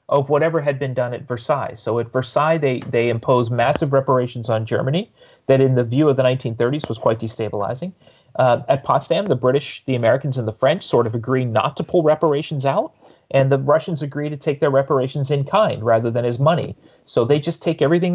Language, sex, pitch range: English, male, 120-160 Hz